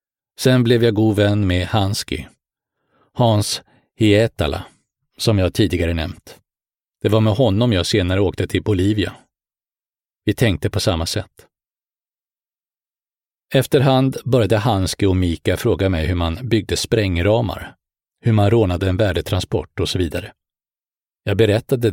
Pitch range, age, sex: 90-115 Hz, 40-59, male